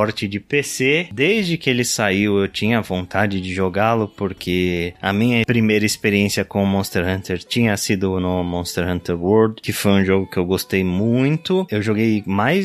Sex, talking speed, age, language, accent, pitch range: male, 170 wpm, 20-39, Portuguese, Brazilian, 90-120 Hz